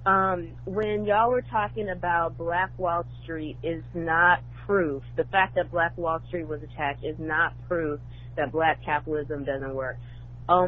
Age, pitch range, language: 30-49, 140-180 Hz, English